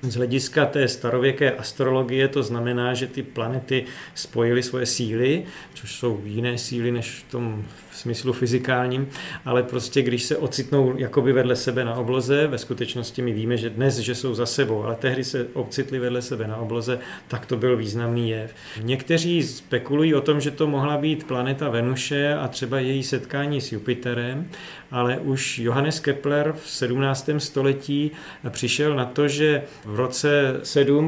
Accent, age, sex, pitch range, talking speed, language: native, 40-59, male, 120-140 Hz, 170 wpm, Czech